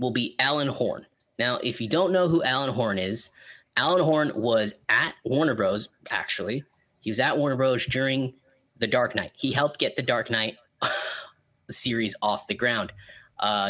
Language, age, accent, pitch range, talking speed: English, 20-39, American, 110-150 Hz, 175 wpm